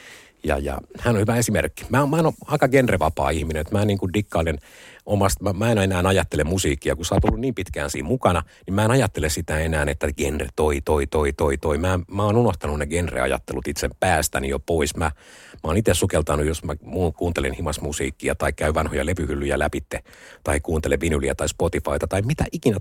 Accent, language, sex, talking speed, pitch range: native, Finnish, male, 205 wpm, 75-105 Hz